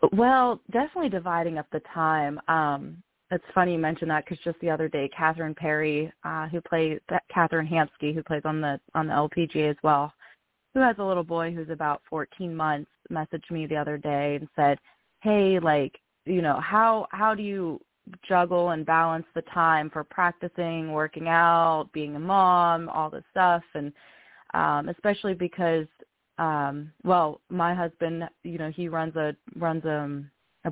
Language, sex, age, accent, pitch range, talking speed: English, female, 20-39, American, 155-175 Hz, 170 wpm